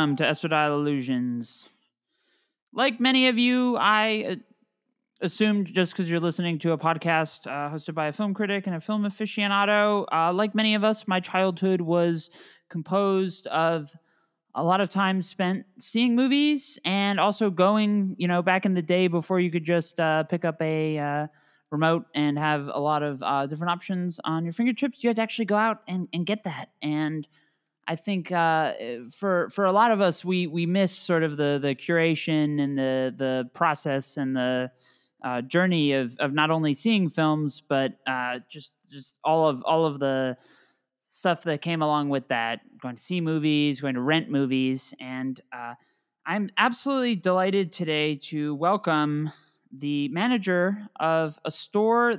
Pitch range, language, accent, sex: 150-200 Hz, English, American, male